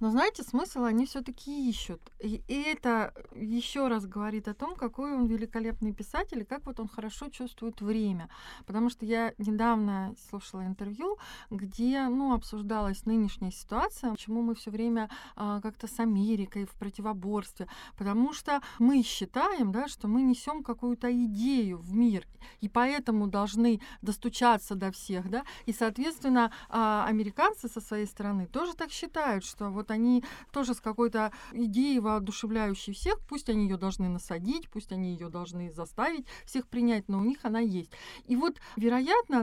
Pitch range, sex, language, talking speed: 205-245 Hz, female, Russian, 155 wpm